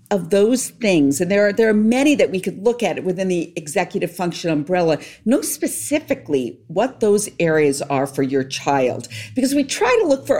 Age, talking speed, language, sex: 50-69, 195 wpm, English, female